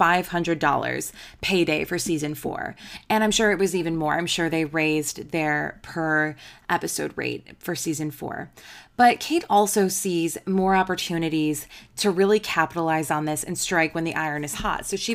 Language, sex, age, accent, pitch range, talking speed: English, female, 20-39, American, 160-195 Hz, 165 wpm